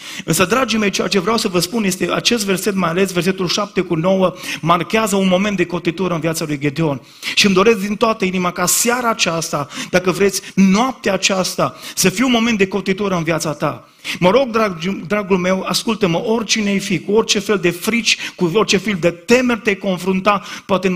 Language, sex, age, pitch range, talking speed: Romanian, male, 30-49, 180-225 Hz, 200 wpm